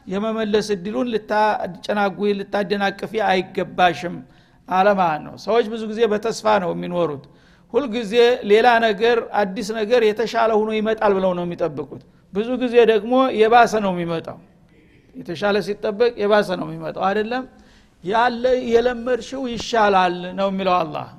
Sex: male